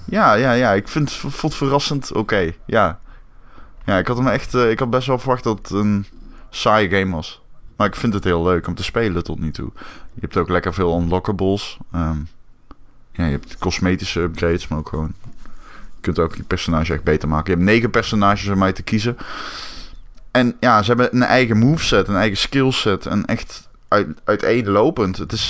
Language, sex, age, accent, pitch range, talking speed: Dutch, male, 20-39, Dutch, 85-110 Hz, 190 wpm